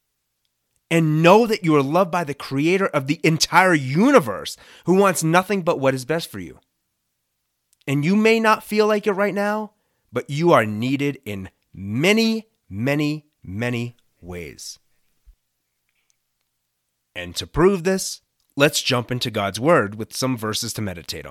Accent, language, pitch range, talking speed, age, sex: American, English, 105-160 Hz, 150 wpm, 30-49, male